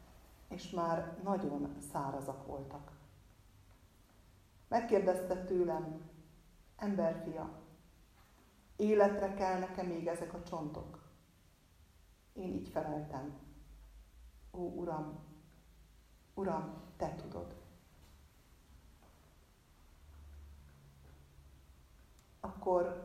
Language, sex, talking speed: Hungarian, female, 60 wpm